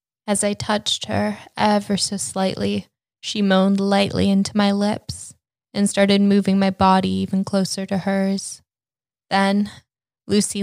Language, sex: English, female